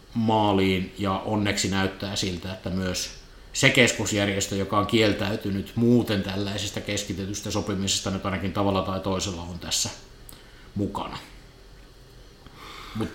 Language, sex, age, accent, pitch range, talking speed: Finnish, male, 50-69, native, 95-110 Hz, 115 wpm